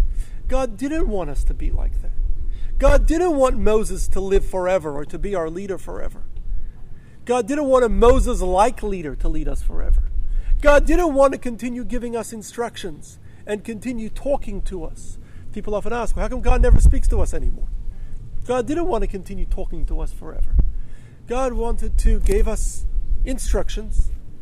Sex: male